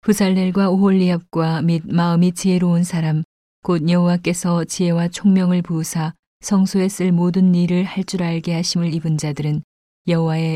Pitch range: 160-180 Hz